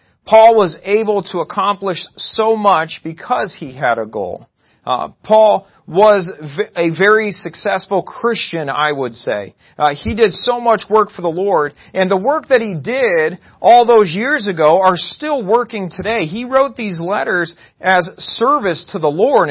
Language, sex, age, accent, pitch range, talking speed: English, male, 40-59, American, 175-220 Hz, 170 wpm